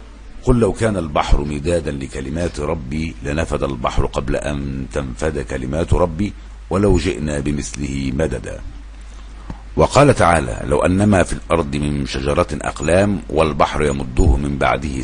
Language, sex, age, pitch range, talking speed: Arabic, male, 60-79, 70-90 Hz, 125 wpm